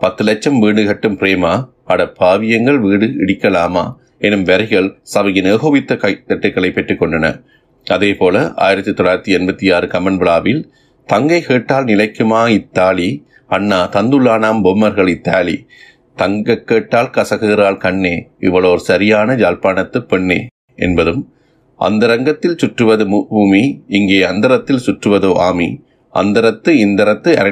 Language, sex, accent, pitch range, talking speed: Tamil, male, native, 95-115 Hz, 100 wpm